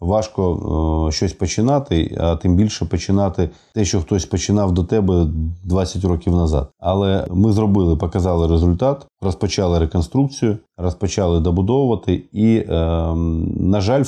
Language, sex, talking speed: Ukrainian, male, 130 wpm